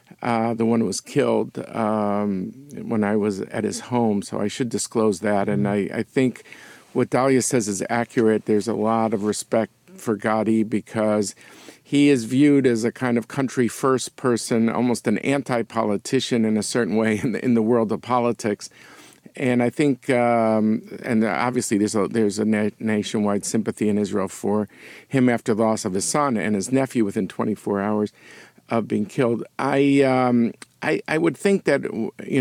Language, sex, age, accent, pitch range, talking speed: English, male, 50-69, American, 110-125 Hz, 175 wpm